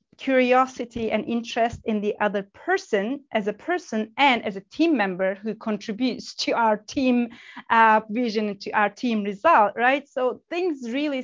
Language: English